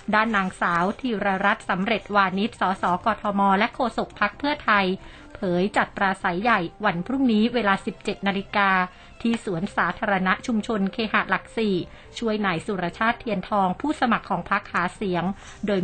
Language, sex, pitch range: Thai, female, 190-225 Hz